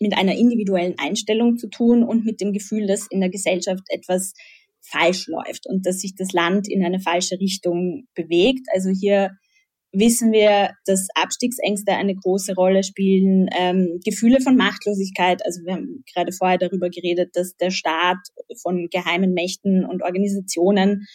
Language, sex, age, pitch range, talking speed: German, female, 20-39, 180-215 Hz, 160 wpm